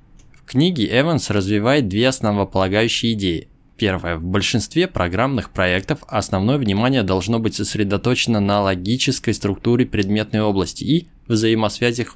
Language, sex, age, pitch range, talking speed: Russian, male, 20-39, 100-130 Hz, 120 wpm